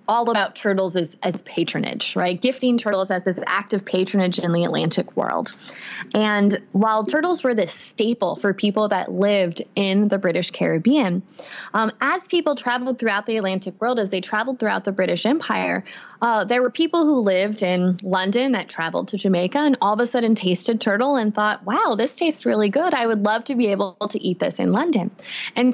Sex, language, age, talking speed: female, English, 20-39, 200 wpm